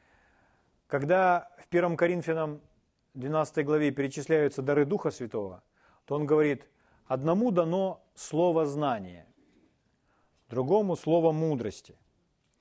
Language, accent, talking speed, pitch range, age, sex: Ukrainian, native, 95 wpm, 145-190 Hz, 40-59, male